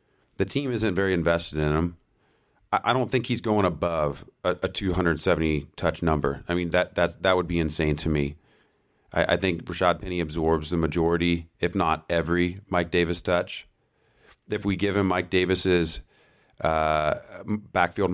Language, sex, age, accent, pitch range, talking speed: English, male, 40-59, American, 85-105 Hz, 160 wpm